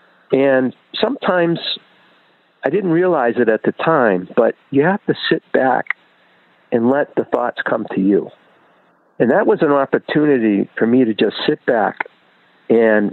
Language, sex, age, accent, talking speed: English, male, 50-69, American, 155 wpm